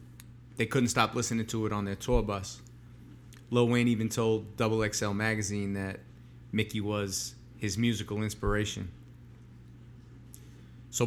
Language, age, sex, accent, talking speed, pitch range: English, 30-49, male, American, 130 wpm, 105-120 Hz